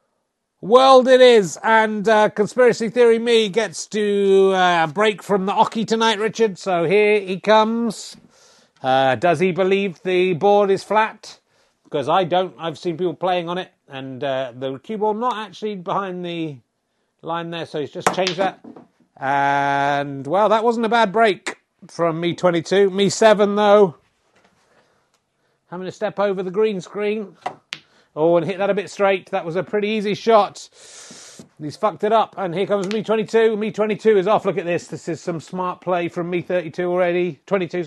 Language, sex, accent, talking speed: English, male, British, 180 wpm